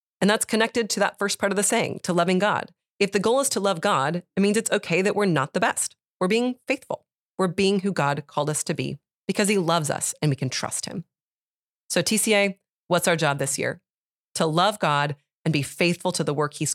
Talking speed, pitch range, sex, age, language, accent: 235 wpm, 155-200 Hz, female, 30-49, English, American